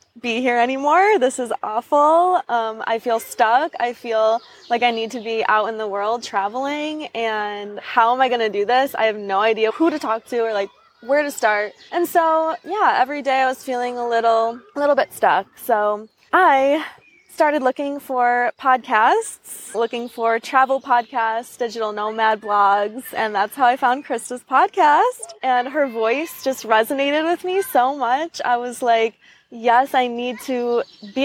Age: 20-39